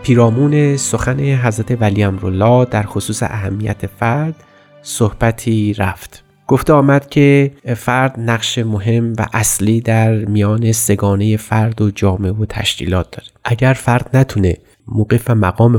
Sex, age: male, 30-49